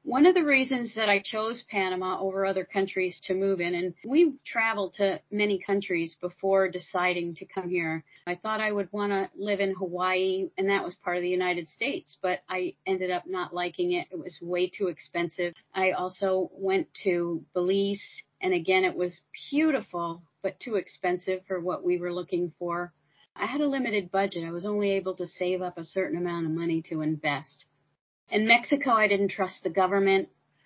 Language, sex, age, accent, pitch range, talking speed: English, female, 40-59, American, 180-210 Hz, 195 wpm